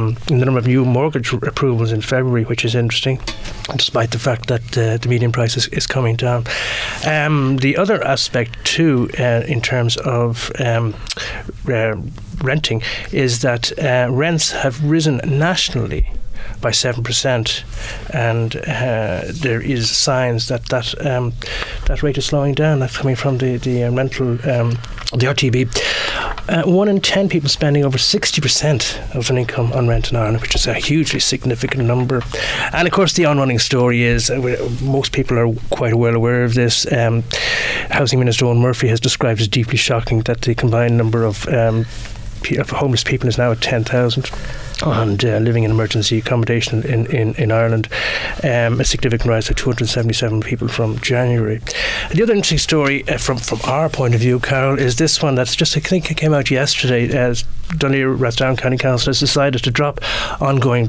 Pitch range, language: 115-140 Hz, English